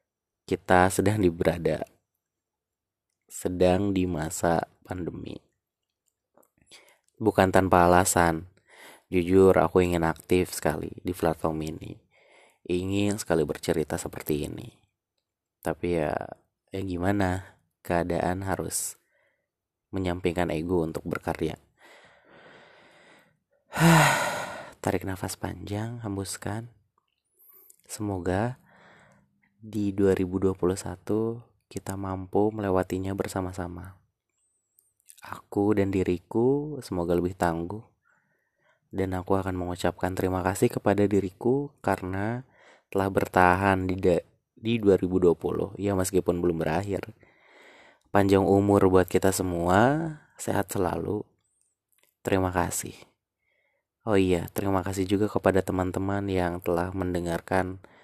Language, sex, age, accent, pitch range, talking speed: Indonesian, male, 30-49, native, 90-100 Hz, 95 wpm